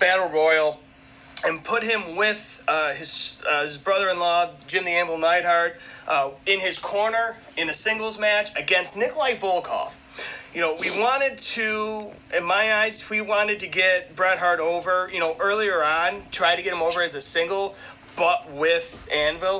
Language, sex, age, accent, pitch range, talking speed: English, male, 30-49, American, 160-210 Hz, 170 wpm